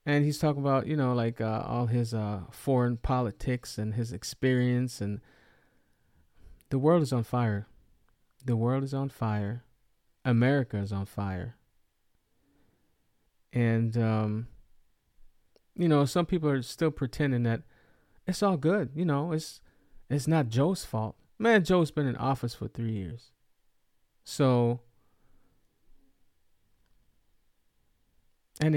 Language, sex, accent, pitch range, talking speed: English, male, American, 115-155 Hz, 125 wpm